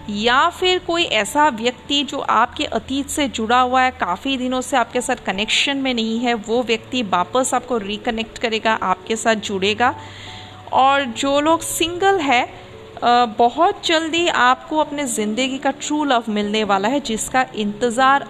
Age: 40-59